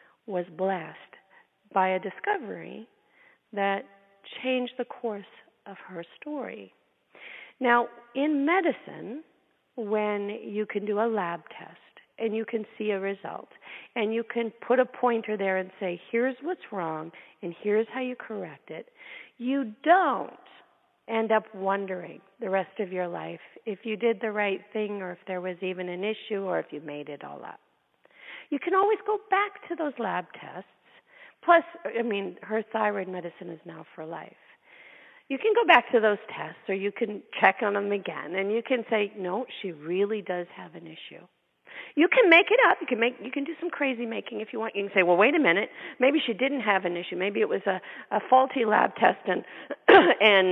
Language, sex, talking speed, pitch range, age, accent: English, female, 190 wpm, 190-260 Hz, 40-59, American